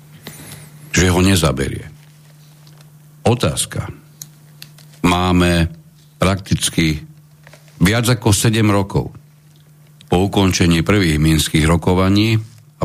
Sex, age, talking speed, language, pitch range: male, 60-79, 75 wpm, Slovak, 90-145 Hz